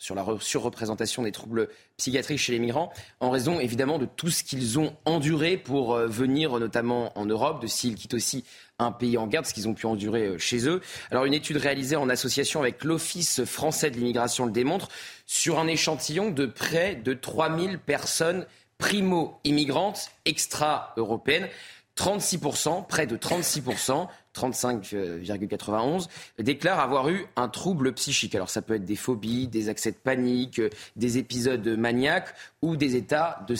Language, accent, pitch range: French, French, 120-160 Hz